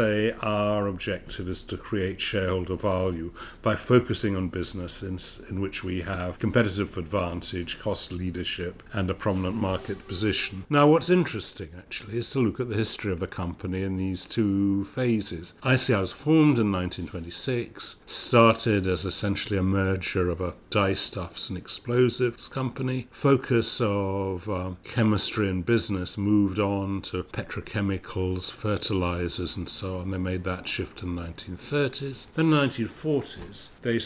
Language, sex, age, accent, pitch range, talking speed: English, male, 60-79, British, 95-115 Hz, 145 wpm